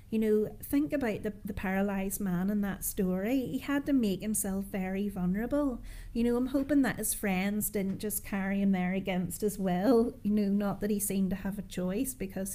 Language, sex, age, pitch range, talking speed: English, female, 30-49, 195-230 Hz, 210 wpm